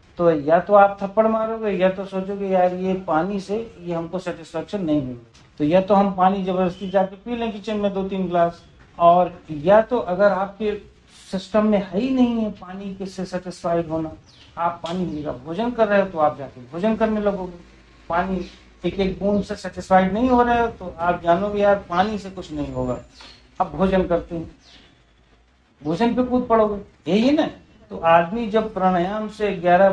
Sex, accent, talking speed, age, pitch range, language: male, native, 185 wpm, 50-69, 175-220 Hz, Hindi